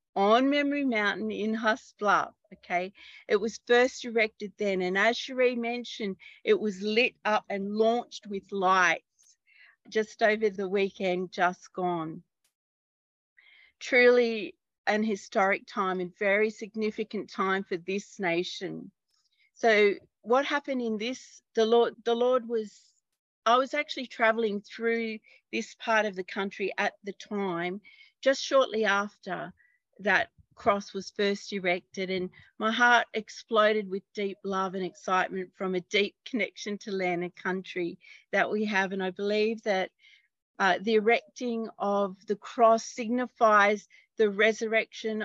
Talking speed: 140 wpm